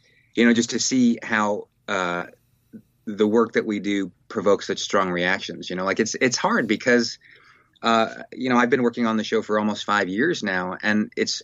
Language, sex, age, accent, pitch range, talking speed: English, male, 30-49, American, 105-125 Hz, 205 wpm